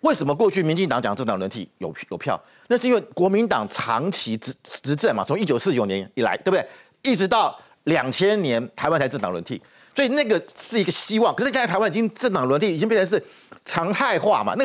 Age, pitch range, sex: 50-69, 145-235 Hz, male